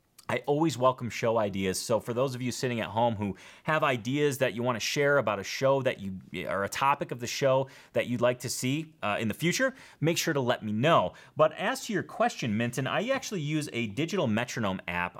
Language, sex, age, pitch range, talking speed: English, male, 30-49, 100-140 Hz, 235 wpm